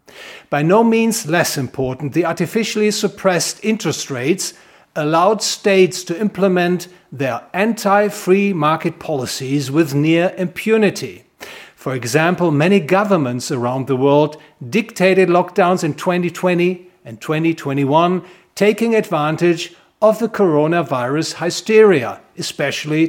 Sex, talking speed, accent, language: male, 105 wpm, German, English